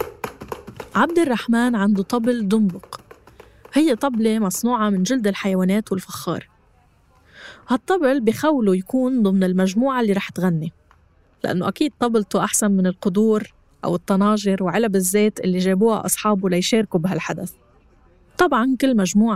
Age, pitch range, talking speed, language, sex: 20-39, 185-230 Hz, 120 wpm, Arabic, female